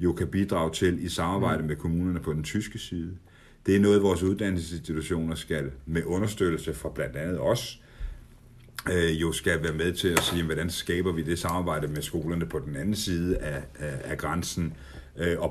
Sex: male